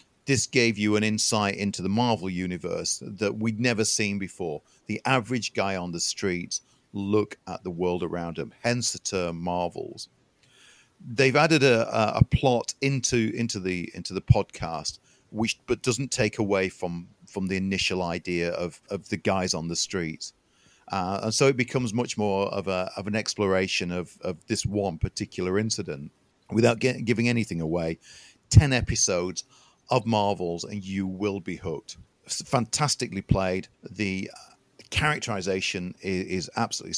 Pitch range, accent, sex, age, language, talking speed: 90-120 Hz, British, male, 40-59, English, 155 wpm